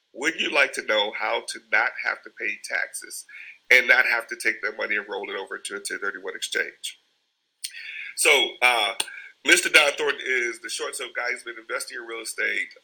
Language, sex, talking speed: English, male, 205 wpm